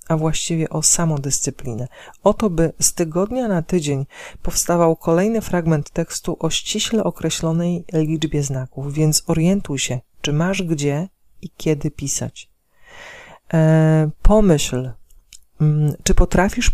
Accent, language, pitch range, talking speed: native, Polish, 135-175 Hz, 115 wpm